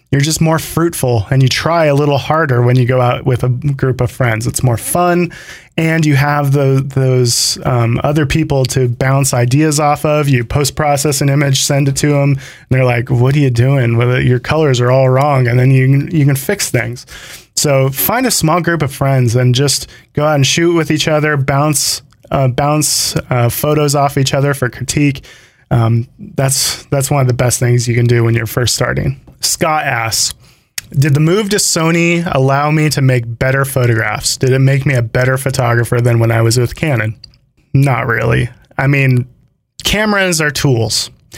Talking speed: 195 wpm